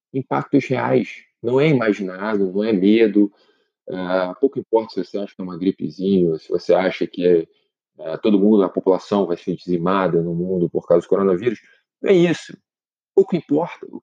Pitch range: 95-120 Hz